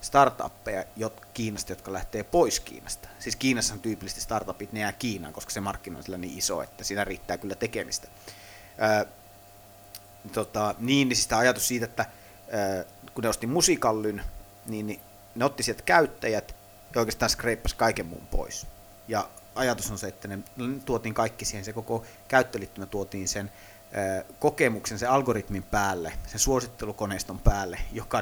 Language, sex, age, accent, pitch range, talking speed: Finnish, male, 30-49, native, 100-115 Hz, 145 wpm